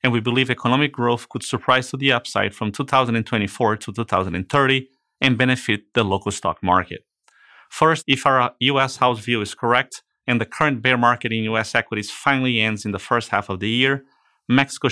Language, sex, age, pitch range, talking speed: English, male, 30-49, 110-130 Hz, 185 wpm